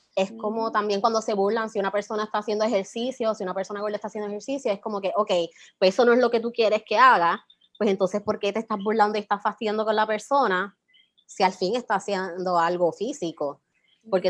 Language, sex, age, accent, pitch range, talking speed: Spanish, female, 20-39, American, 185-225 Hz, 225 wpm